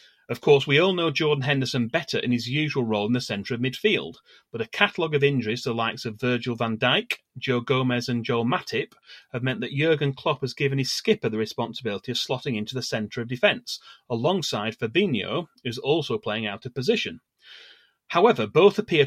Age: 30-49